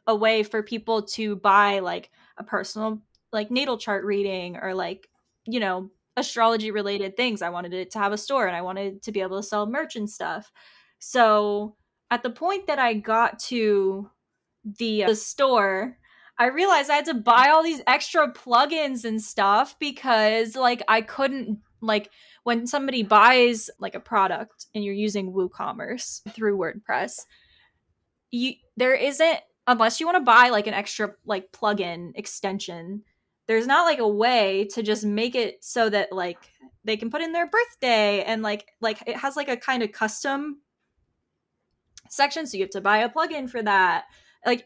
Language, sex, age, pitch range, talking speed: English, female, 10-29, 205-245 Hz, 175 wpm